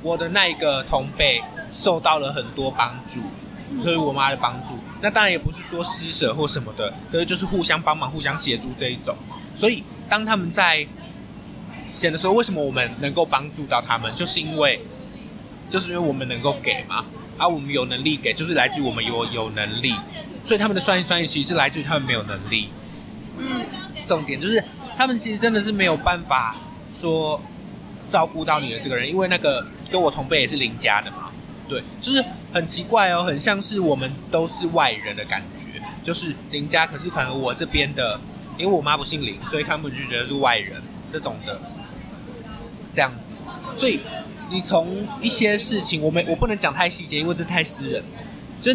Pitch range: 145-190 Hz